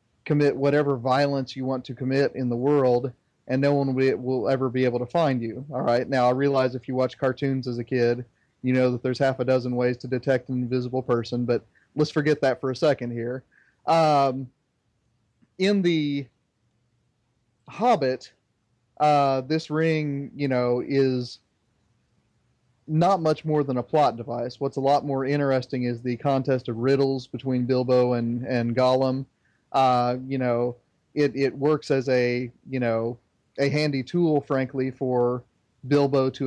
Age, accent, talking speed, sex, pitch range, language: 30-49, American, 170 wpm, male, 125-145 Hz, English